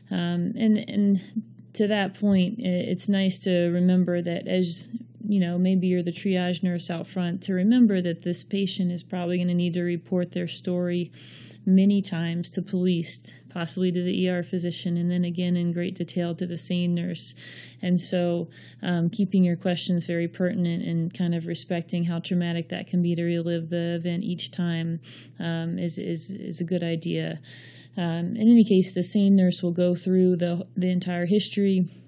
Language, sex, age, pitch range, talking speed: English, female, 30-49, 175-190 Hz, 185 wpm